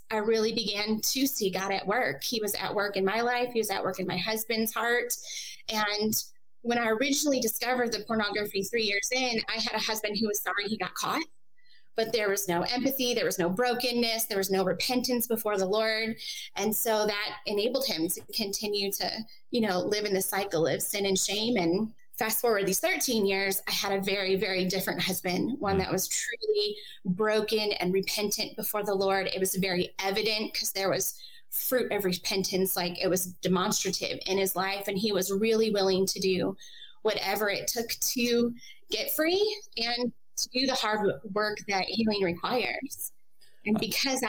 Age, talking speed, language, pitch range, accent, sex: 20-39, 190 wpm, English, 195-235 Hz, American, female